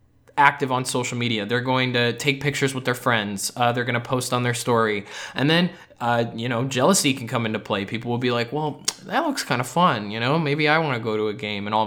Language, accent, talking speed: English, American, 250 wpm